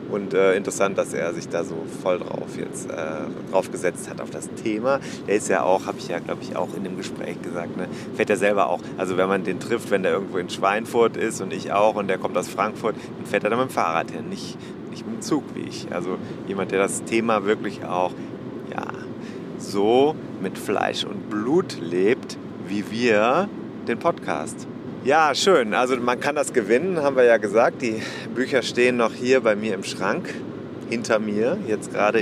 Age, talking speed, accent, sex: 30-49, 205 wpm, German, male